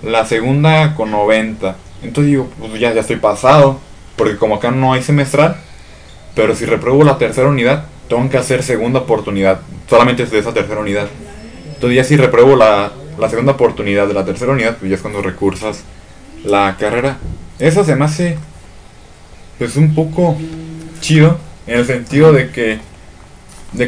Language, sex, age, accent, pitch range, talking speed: Spanish, male, 20-39, Mexican, 100-130 Hz, 170 wpm